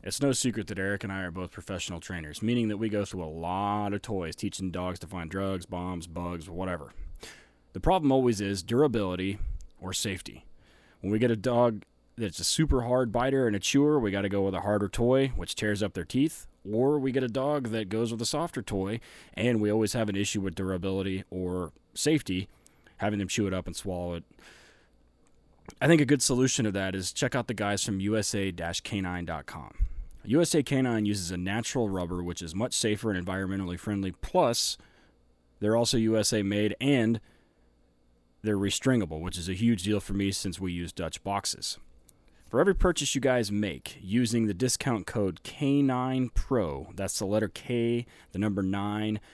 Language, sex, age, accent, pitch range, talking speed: English, male, 20-39, American, 90-115 Hz, 190 wpm